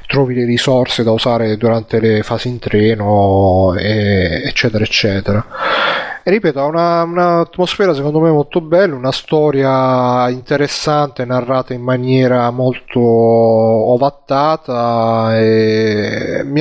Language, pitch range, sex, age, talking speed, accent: Italian, 115-140 Hz, male, 30-49, 110 wpm, native